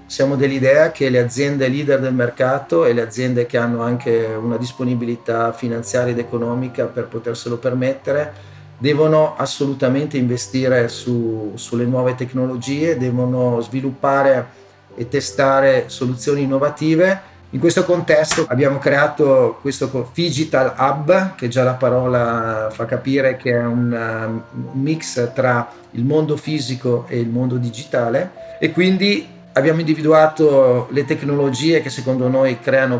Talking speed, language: 125 wpm, Italian